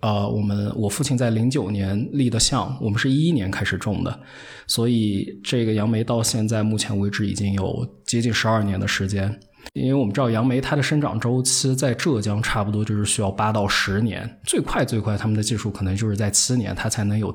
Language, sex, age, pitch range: Chinese, male, 20-39, 105-130 Hz